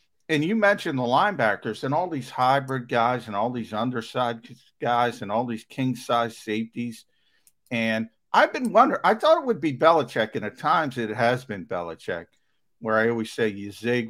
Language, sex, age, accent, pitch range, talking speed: English, male, 50-69, American, 110-135 Hz, 185 wpm